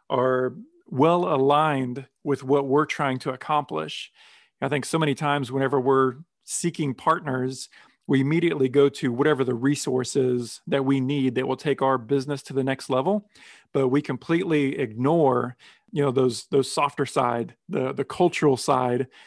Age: 40-59